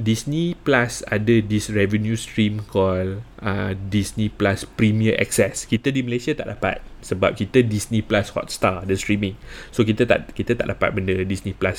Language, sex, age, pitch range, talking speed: Malay, male, 20-39, 100-135 Hz, 170 wpm